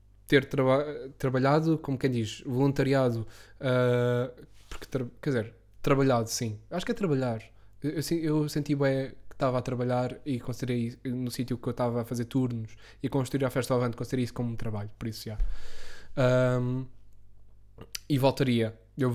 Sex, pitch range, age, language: male, 125-140 Hz, 10-29, Portuguese